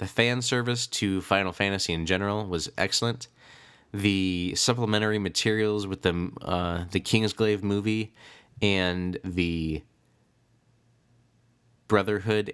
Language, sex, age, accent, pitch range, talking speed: English, male, 20-39, American, 95-120 Hz, 105 wpm